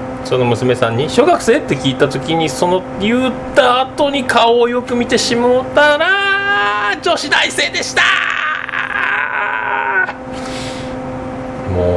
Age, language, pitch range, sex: 40-59, Japanese, 125-180 Hz, male